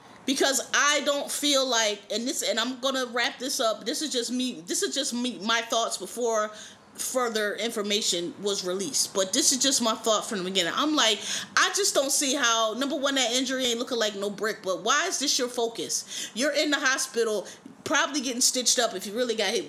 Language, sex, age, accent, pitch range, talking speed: English, female, 20-39, American, 225-290 Hz, 220 wpm